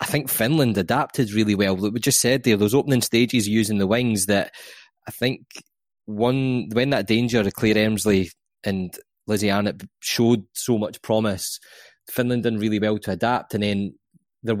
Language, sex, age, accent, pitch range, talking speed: English, male, 20-39, British, 100-115 Hz, 175 wpm